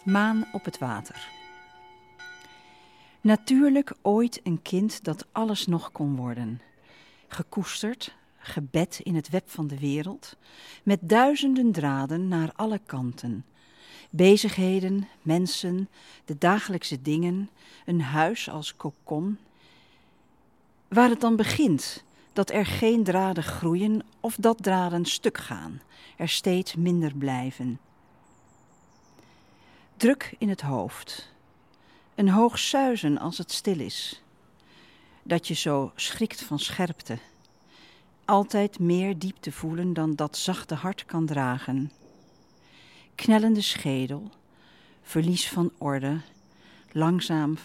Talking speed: 110 wpm